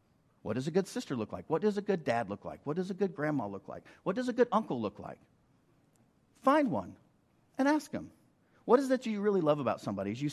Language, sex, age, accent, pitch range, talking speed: English, male, 50-69, American, 125-185 Hz, 255 wpm